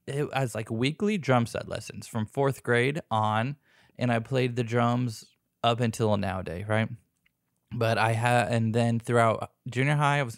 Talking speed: 180 wpm